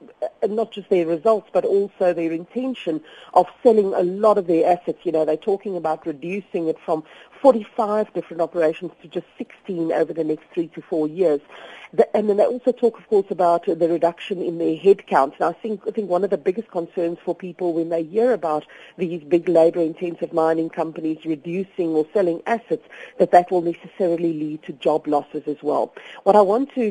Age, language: 50-69, English